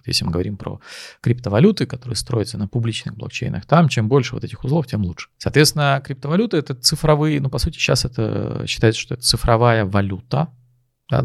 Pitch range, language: 105-135 Hz, Russian